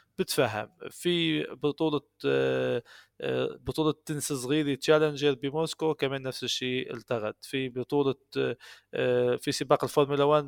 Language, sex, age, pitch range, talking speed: Arabic, male, 20-39, 125-155 Hz, 105 wpm